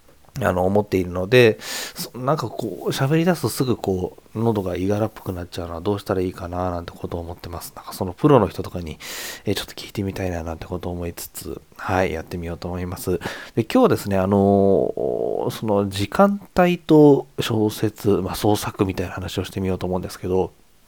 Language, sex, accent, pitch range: Japanese, male, native, 90-130 Hz